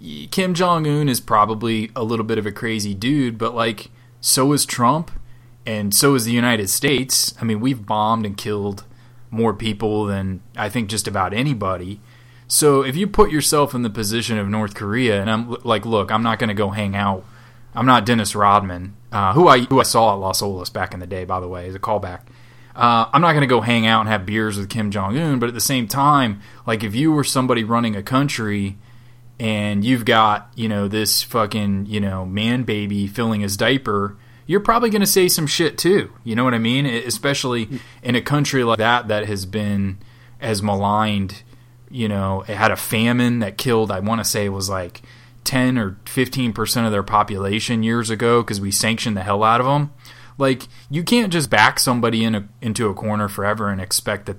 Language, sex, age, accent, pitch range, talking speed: English, male, 20-39, American, 105-125 Hz, 210 wpm